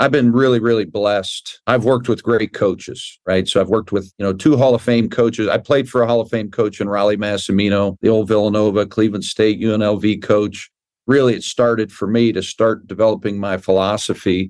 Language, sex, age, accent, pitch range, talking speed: English, male, 50-69, American, 100-120 Hz, 205 wpm